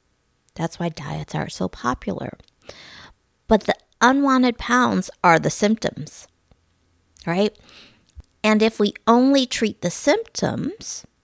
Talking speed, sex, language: 110 wpm, female, English